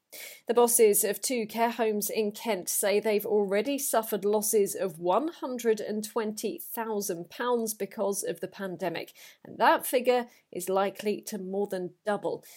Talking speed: 135 wpm